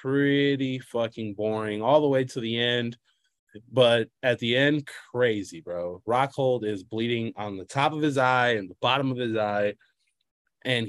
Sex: male